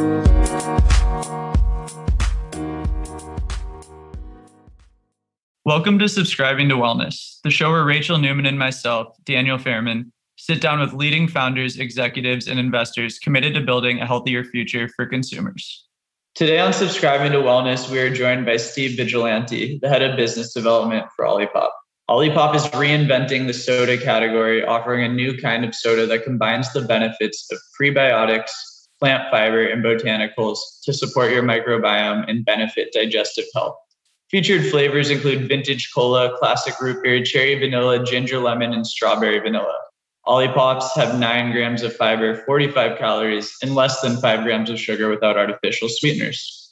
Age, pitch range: 20-39, 115-135 Hz